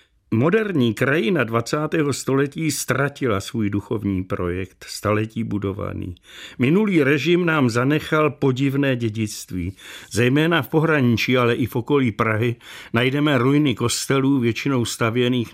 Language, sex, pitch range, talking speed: Czech, male, 110-140 Hz, 110 wpm